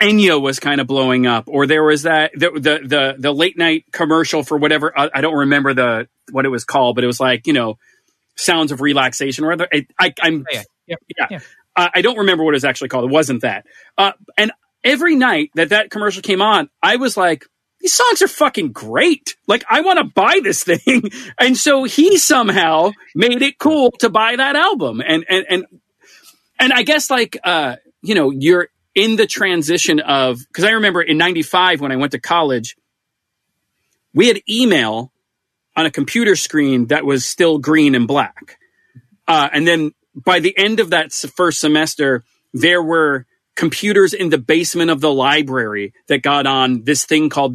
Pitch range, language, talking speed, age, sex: 145-210 Hz, English, 195 wpm, 30-49, male